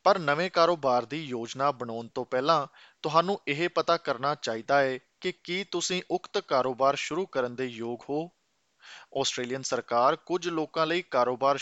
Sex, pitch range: male, 130-175 Hz